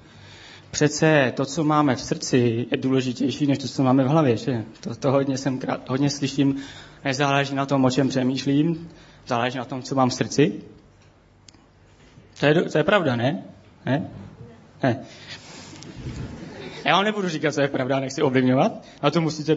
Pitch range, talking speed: 125-160 Hz, 165 wpm